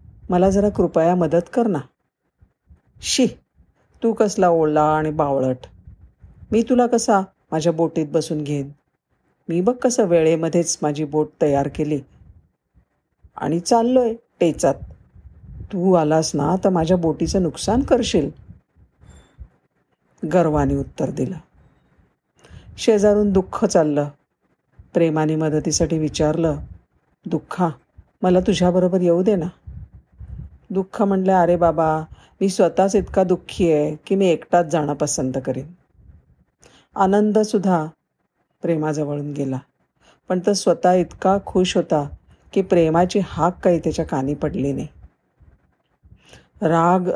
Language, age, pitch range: Marathi, 50-69, 155-190 Hz